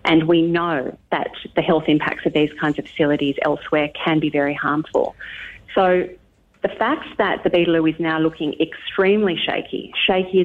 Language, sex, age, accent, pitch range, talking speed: English, female, 40-59, Australian, 155-185 Hz, 165 wpm